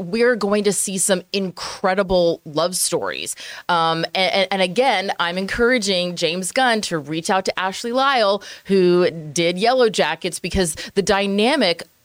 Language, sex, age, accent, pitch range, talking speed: English, female, 20-39, American, 175-220 Hz, 145 wpm